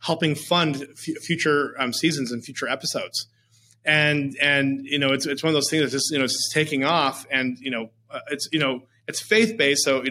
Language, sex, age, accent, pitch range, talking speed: English, male, 30-49, American, 130-160 Hz, 195 wpm